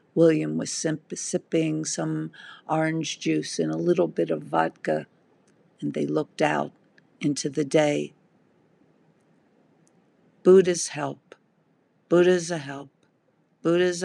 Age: 50-69